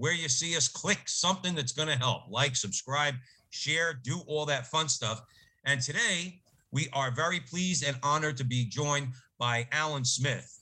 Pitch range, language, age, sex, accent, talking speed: 120-145 Hz, English, 50-69, male, American, 175 wpm